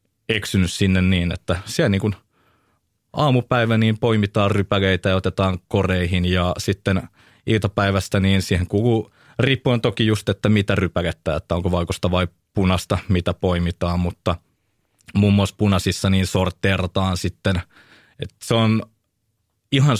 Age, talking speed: 20-39, 130 wpm